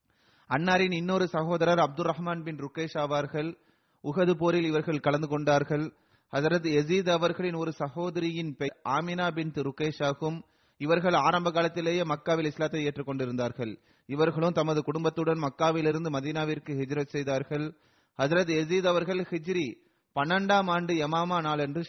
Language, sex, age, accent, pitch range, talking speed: Tamil, male, 30-49, native, 150-180 Hz, 120 wpm